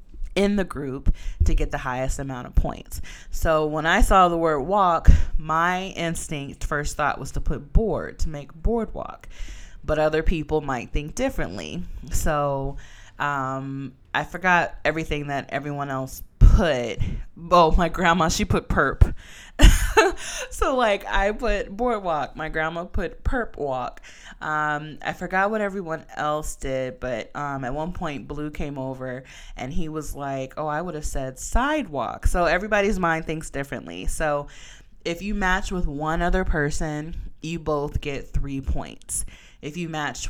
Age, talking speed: 20-39, 155 wpm